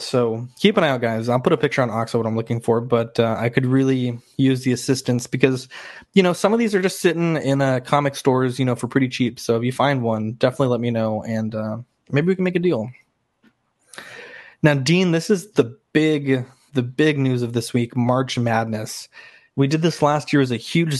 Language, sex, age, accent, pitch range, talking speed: English, male, 20-39, American, 120-145 Hz, 235 wpm